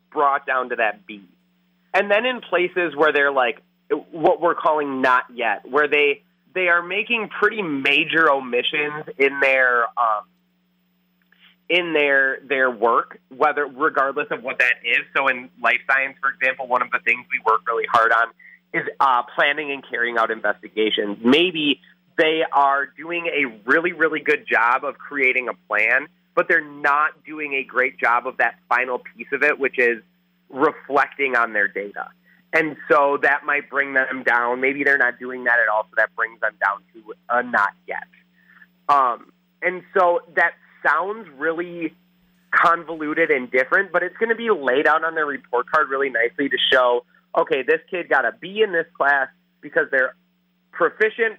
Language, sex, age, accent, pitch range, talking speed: English, male, 30-49, American, 120-165 Hz, 175 wpm